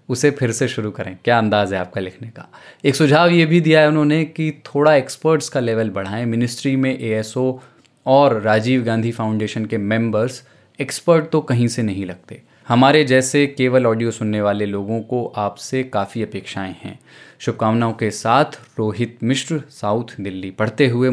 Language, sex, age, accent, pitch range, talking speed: Hindi, male, 20-39, native, 105-130 Hz, 170 wpm